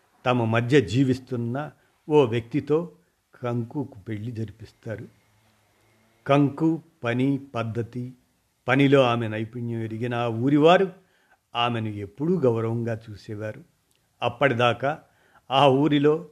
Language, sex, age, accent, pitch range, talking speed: Telugu, male, 50-69, native, 110-140 Hz, 85 wpm